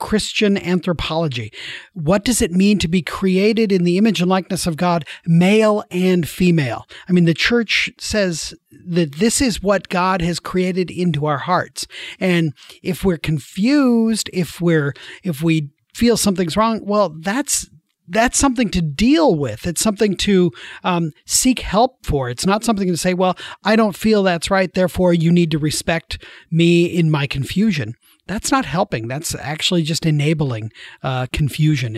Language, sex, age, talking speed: English, male, 40-59, 165 wpm